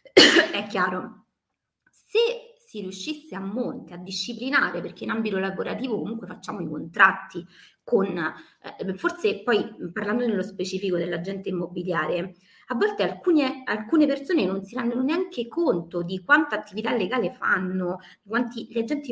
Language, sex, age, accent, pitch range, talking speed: Italian, female, 30-49, native, 180-250 Hz, 140 wpm